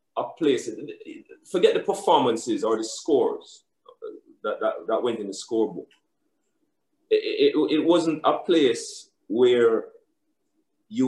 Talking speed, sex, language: 125 wpm, male, English